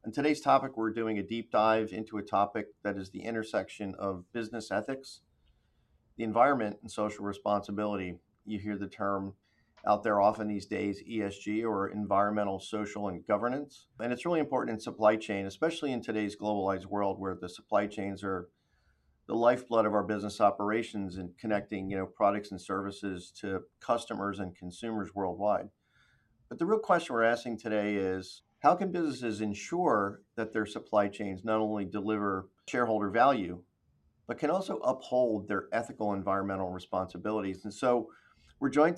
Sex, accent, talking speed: male, American, 165 wpm